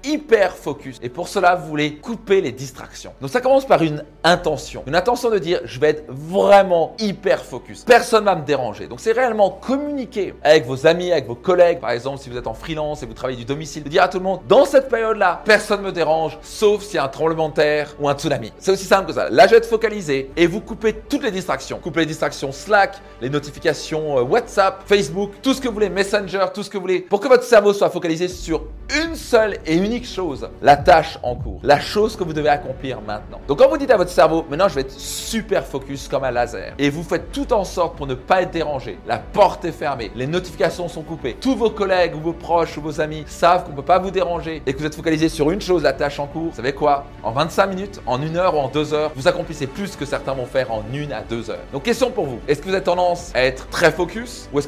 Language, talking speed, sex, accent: French, 255 wpm, male, French